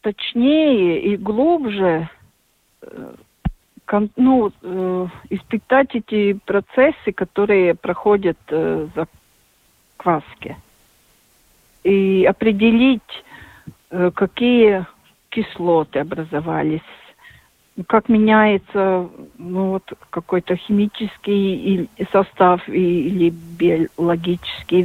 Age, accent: 50-69, native